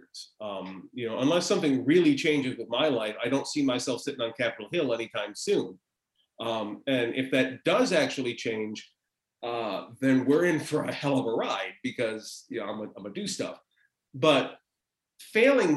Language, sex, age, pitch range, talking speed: English, male, 30-49, 115-160 Hz, 170 wpm